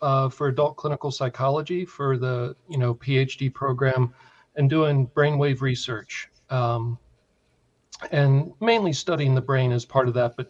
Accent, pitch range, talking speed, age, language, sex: American, 120-140 Hz, 150 wpm, 40-59, English, male